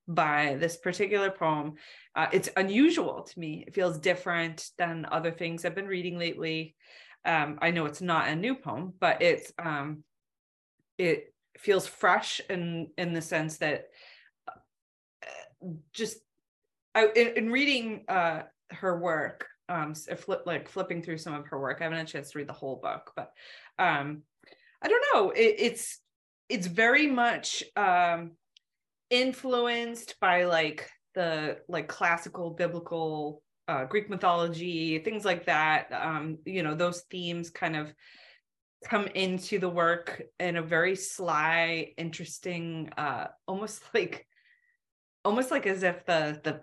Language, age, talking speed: English, 30-49, 145 wpm